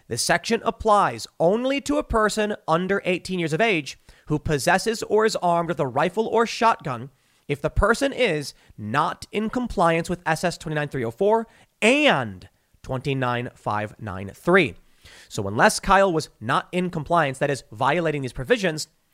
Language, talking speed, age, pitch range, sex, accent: English, 140 wpm, 30-49, 135-190 Hz, male, American